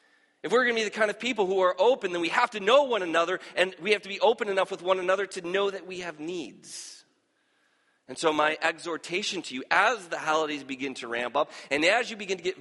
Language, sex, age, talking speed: English, male, 40-59, 255 wpm